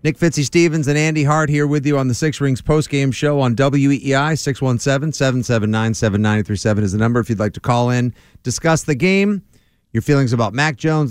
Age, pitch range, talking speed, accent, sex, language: 40-59, 105-145 Hz, 190 wpm, American, male, English